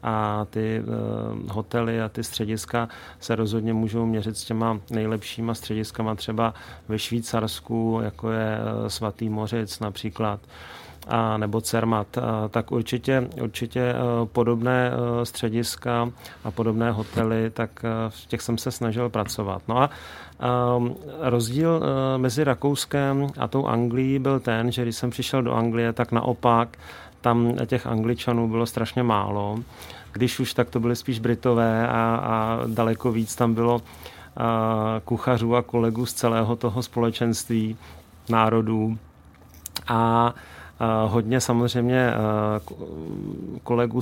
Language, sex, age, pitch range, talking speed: Czech, male, 40-59, 110-120 Hz, 120 wpm